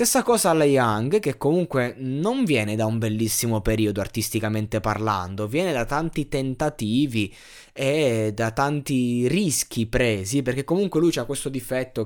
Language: Italian